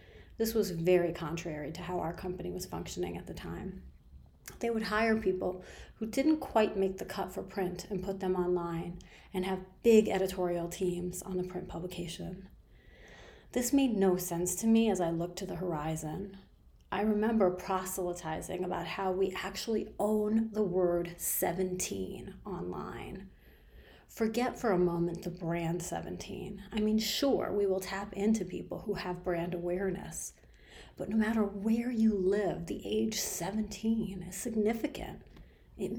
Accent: American